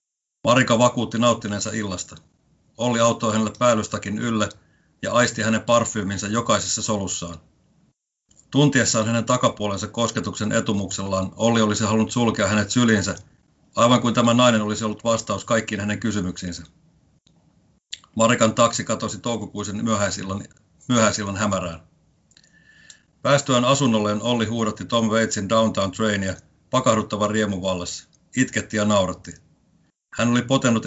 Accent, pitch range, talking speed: native, 100-115 Hz, 115 wpm